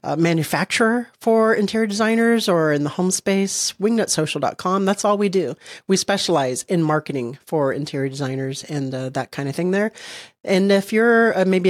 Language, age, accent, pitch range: English, 40-59, American, 150-210 Hz